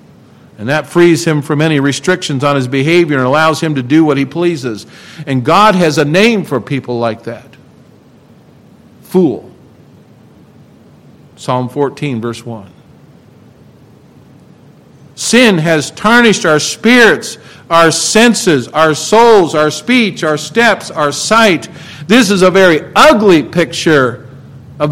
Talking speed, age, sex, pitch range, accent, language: 130 wpm, 50-69, male, 145-200 Hz, American, English